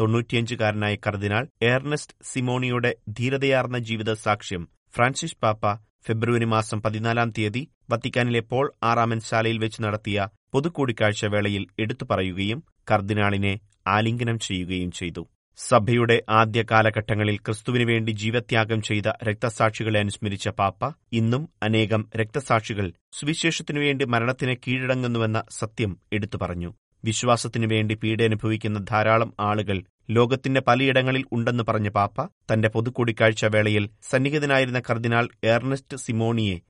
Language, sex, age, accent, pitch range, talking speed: Malayalam, male, 30-49, native, 105-120 Hz, 100 wpm